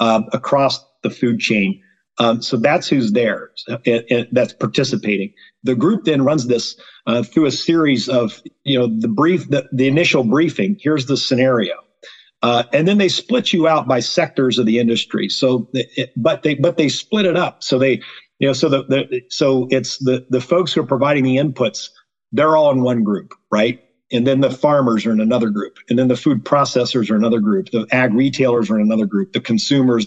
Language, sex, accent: English, male, American